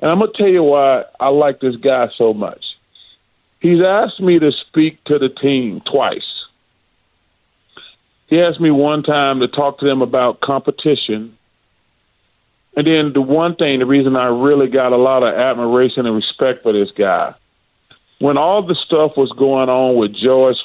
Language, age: English, 40-59